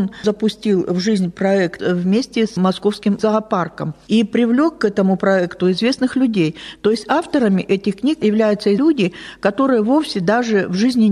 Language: Russian